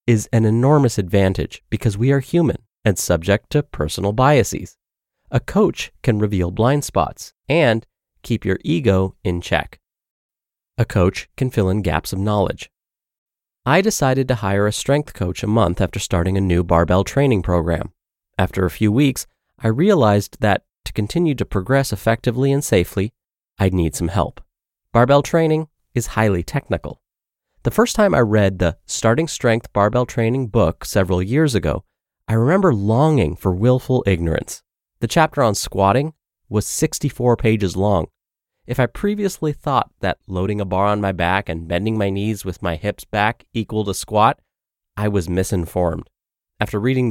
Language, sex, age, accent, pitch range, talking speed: English, male, 30-49, American, 95-130 Hz, 160 wpm